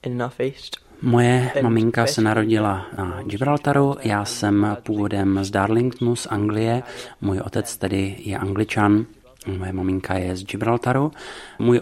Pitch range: 95-110 Hz